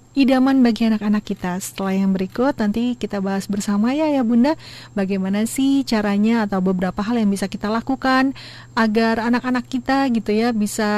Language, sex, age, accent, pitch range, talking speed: Indonesian, female, 40-59, native, 210-270 Hz, 165 wpm